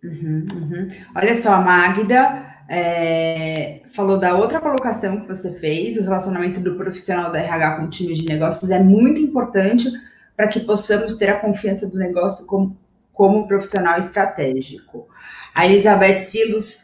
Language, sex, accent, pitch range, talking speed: Portuguese, female, Brazilian, 180-225 Hz, 155 wpm